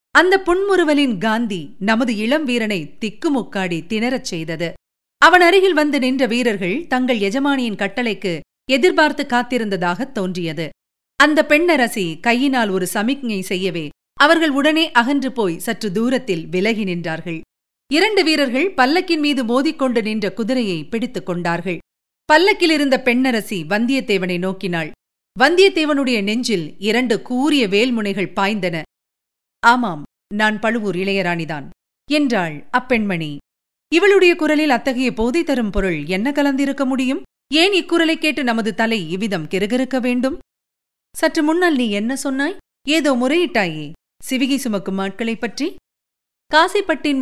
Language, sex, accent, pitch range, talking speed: Tamil, female, native, 200-290 Hz, 110 wpm